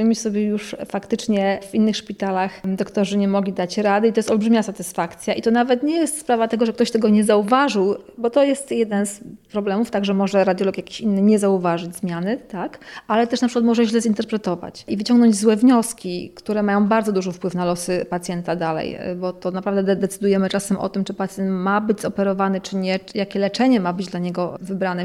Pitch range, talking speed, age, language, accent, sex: 190-220 Hz, 210 wpm, 30-49, Polish, native, female